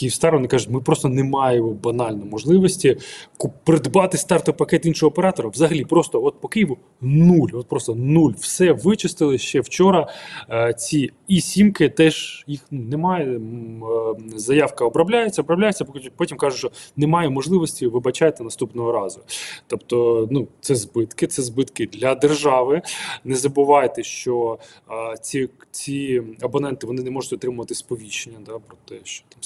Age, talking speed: 20-39, 135 wpm